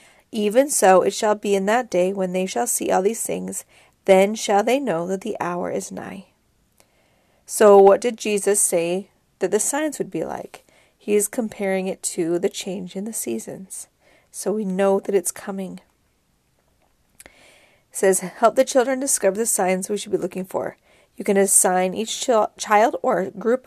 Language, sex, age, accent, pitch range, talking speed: English, female, 40-59, American, 185-210 Hz, 180 wpm